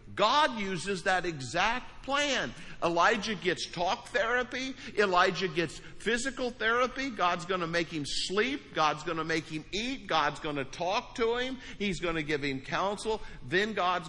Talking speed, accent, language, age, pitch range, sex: 165 wpm, American, English, 50-69, 125-180 Hz, male